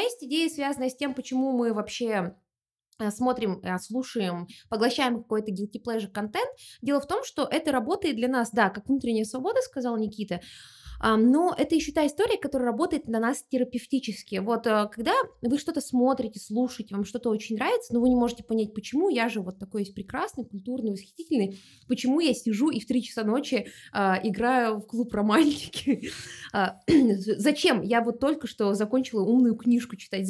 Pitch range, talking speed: 215-280 Hz, 170 wpm